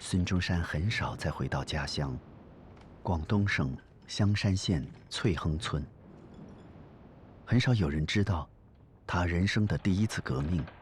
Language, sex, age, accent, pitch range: Chinese, male, 50-69, native, 80-110 Hz